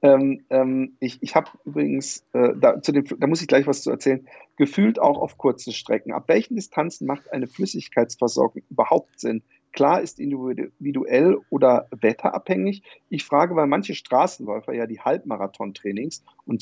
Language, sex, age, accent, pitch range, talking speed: German, male, 40-59, German, 110-140 Hz, 160 wpm